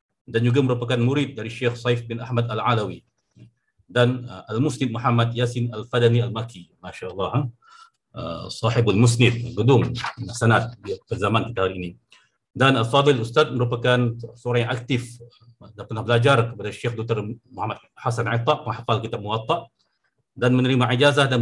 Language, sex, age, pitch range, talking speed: Indonesian, male, 50-69, 115-130 Hz, 145 wpm